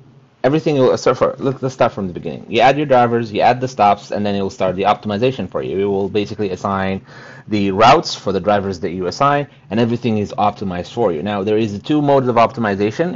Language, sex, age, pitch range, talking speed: English, male, 30-49, 105-135 Hz, 240 wpm